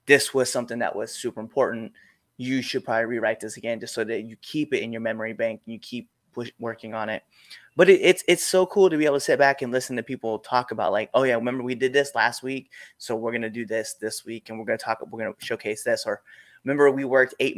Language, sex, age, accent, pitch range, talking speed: English, male, 20-39, American, 115-130 Hz, 255 wpm